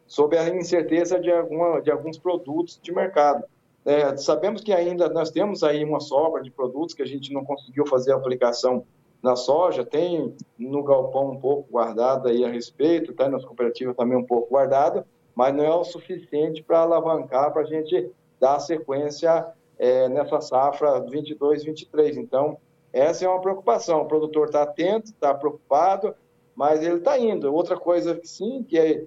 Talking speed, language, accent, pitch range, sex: 175 wpm, Portuguese, Brazilian, 140-170 Hz, male